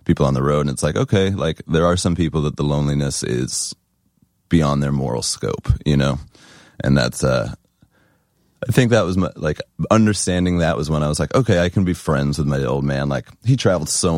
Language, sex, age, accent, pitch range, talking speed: English, male, 30-49, American, 70-85 Hz, 215 wpm